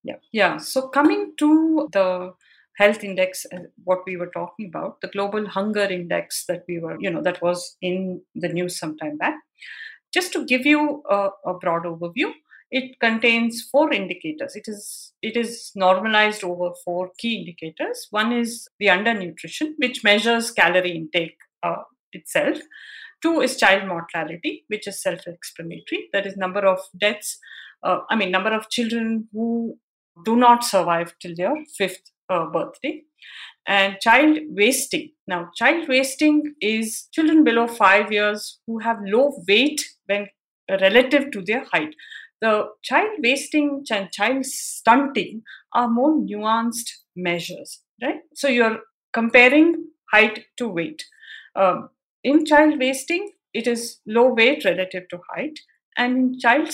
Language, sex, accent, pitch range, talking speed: English, female, Indian, 190-275 Hz, 145 wpm